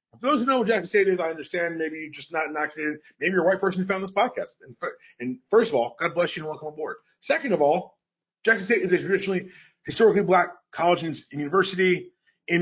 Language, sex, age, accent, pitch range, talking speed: English, male, 30-49, American, 150-195 Hz, 235 wpm